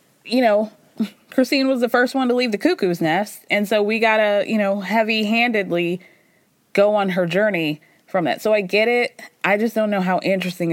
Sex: female